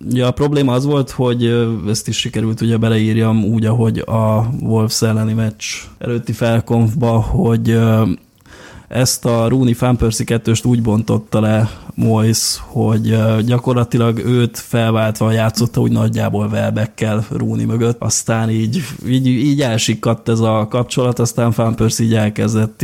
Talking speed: 135 wpm